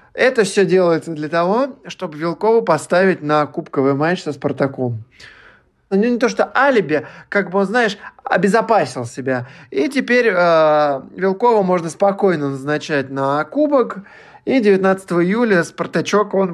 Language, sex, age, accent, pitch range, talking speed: Russian, male, 20-39, native, 140-200 Hz, 140 wpm